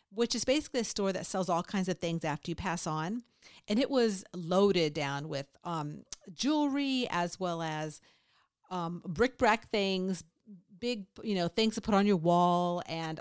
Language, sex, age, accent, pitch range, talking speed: English, female, 50-69, American, 175-235 Hz, 180 wpm